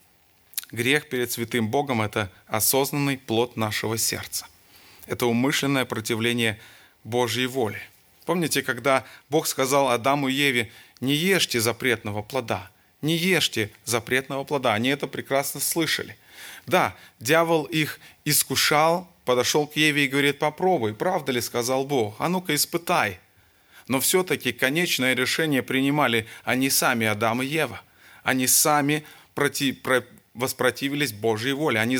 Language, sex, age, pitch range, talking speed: Russian, male, 30-49, 115-145 Hz, 130 wpm